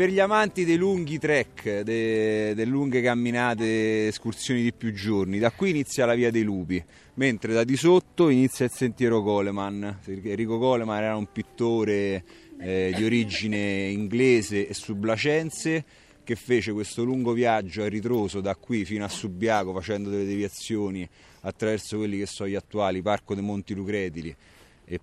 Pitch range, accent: 95-115 Hz, native